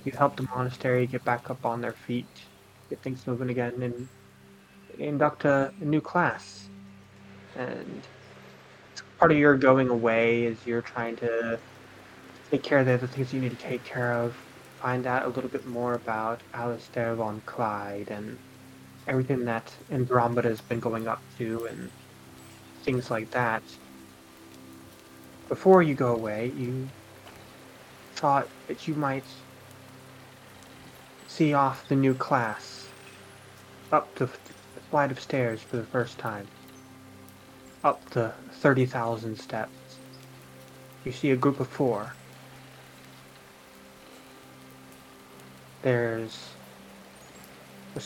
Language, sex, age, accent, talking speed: English, male, 20-39, American, 125 wpm